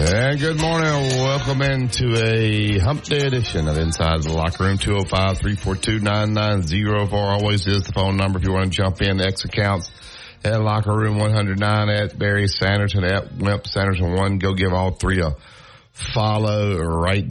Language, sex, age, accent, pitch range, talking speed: English, male, 50-69, American, 80-105 Hz, 160 wpm